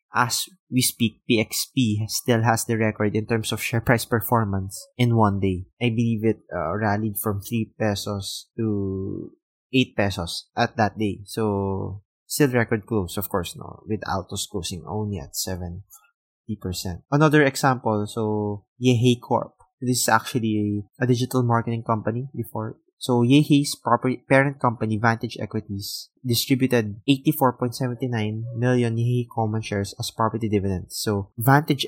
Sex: male